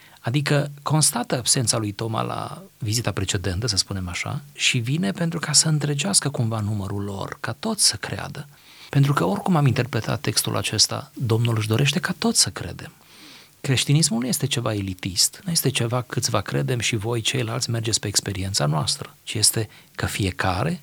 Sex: male